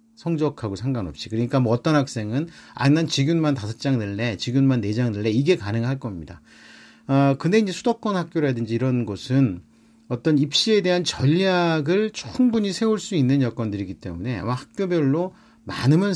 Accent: Korean